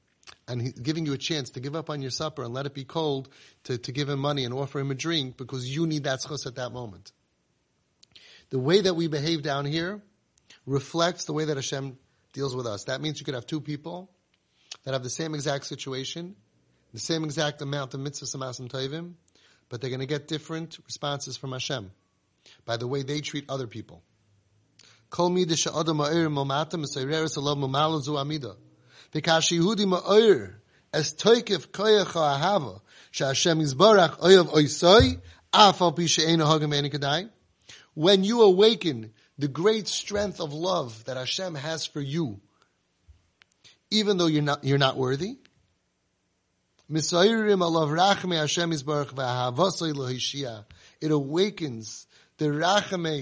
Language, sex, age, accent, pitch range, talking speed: English, male, 30-49, American, 130-165 Hz, 125 wpm